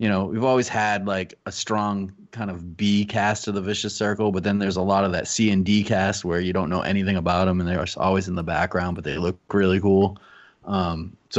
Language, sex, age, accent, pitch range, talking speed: English, male, 30-49, American, 90-110 Hz, 250 wpm